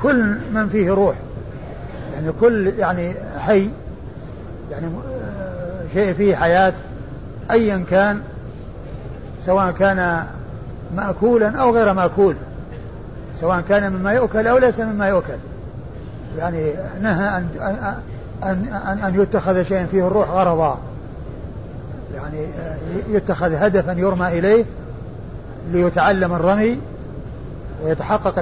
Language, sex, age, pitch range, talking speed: Arabic, male, 50-69, 165-200 Hz, 100 wpm